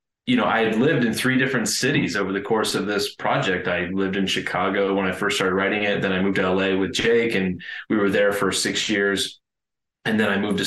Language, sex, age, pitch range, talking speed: English, male, 20-39, 95-115 Hz, 245 wpm